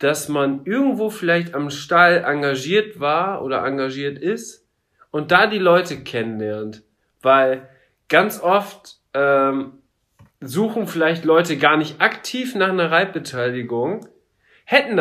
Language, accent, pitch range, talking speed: German, German, 140-190 Hz, 120 wpm